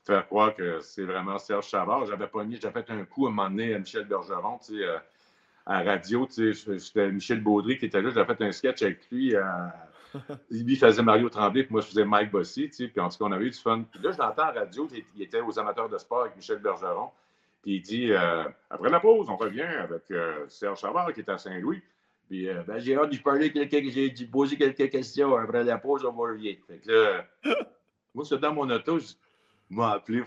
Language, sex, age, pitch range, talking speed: French, male, 60-79, 110-150 Hz, 245 wpm